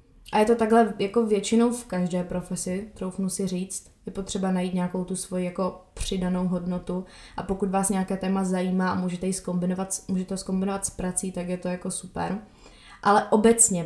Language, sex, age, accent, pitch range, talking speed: Czech, female, 20-39, native, 185-220 Hz, 185 wpm